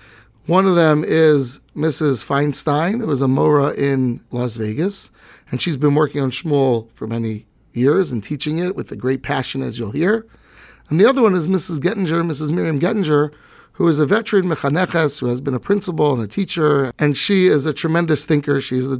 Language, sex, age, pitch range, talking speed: English, male, 40-59, 135-170 Hz, 195 wpm